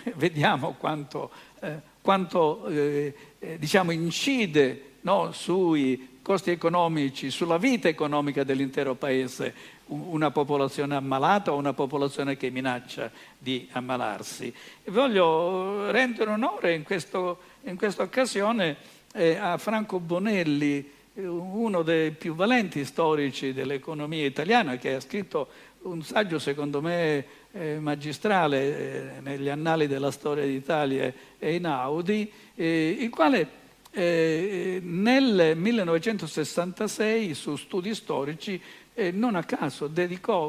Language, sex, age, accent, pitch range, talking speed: Italian, male, 60-79, native, 145-195 Hz, 100 wpm